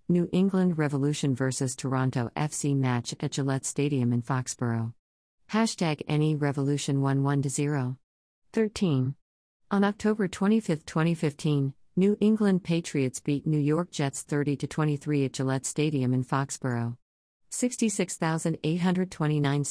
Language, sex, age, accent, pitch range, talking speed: English, female, 50-69, American, 130-165 Hz, 120 wpm